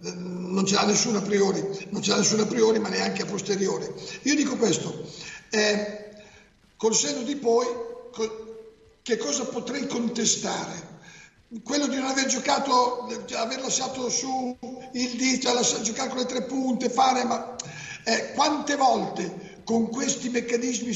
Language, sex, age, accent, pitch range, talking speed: Italian, male, 50-69, native, 205-245 Hz, 150 wpm